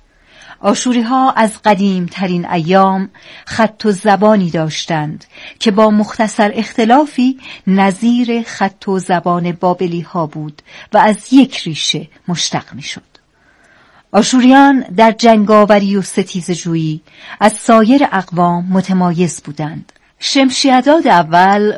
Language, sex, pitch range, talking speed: Persian, female, 175-225 Hz, 110 wpm